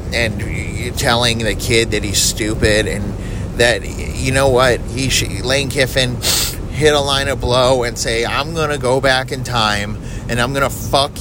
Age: 30-49